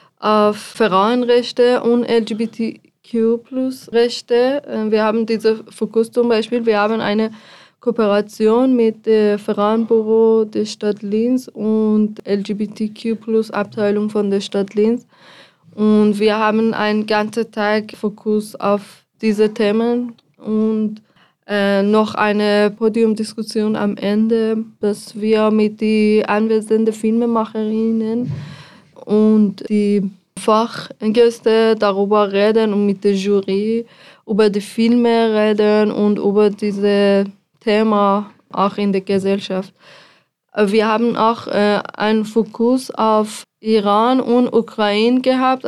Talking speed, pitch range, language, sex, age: 105 wpm, 210-225 Hz, German, female, 20-39